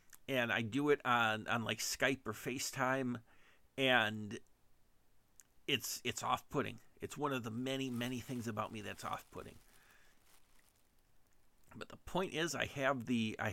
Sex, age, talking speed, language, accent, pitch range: male, 50-69, 145 wpm, English, American, 110-130 Hz